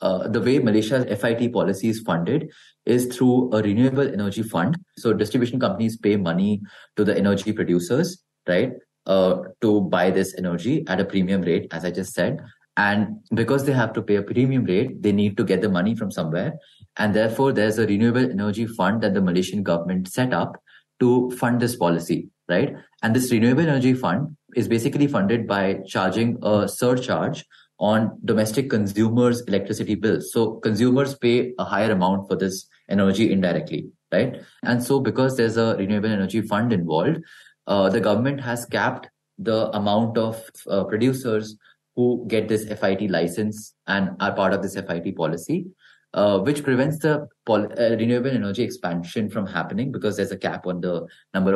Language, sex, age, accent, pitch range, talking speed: English, male, 30-49, Indian, 95-120 Hz, 170 wpm